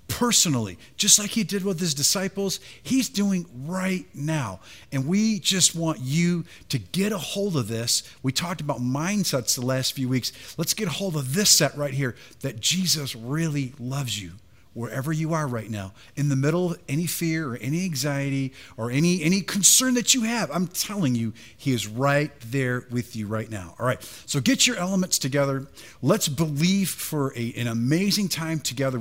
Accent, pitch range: American, 120-170 Hz